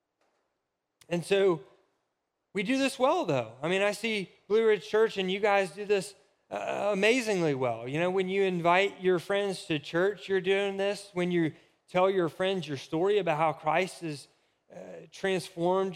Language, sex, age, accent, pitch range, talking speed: English, male, 30-49, American, 165-200 Hz, 175 wpm